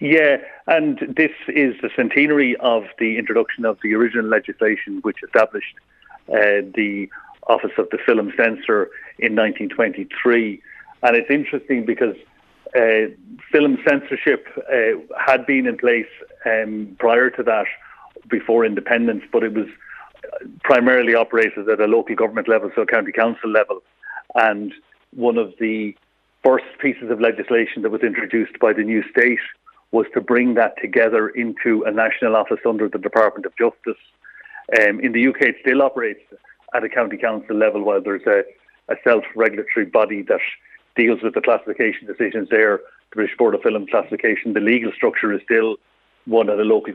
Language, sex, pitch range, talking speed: English, male, 110-145 Hz, 160 wpm